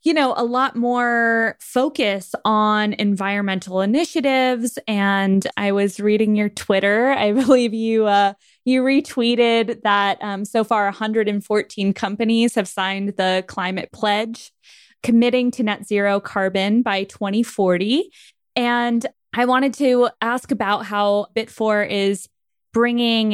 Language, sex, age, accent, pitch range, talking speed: English, female, 20-39, American, 200-240 Hz, 125 wpm